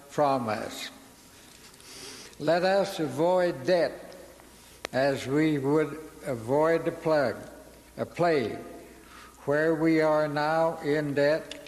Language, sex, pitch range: English, male, 135-165 Hz